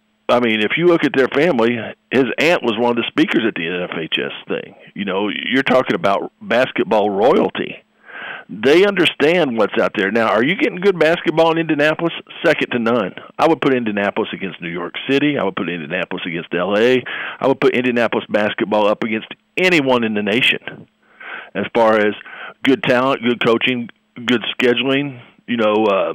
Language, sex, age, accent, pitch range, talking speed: English, male, 50-69, American, 115-155 Hz, 180 wpm